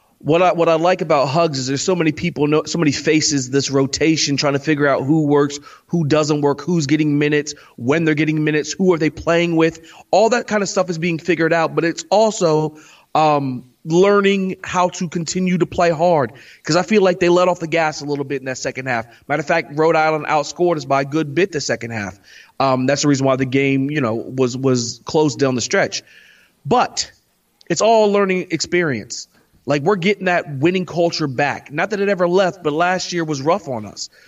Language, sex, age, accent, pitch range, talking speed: English, male, 30-49, American, 145-185 Hz, 225 wpm